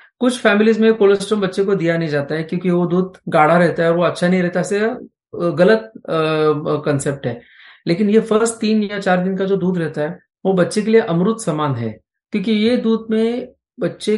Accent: native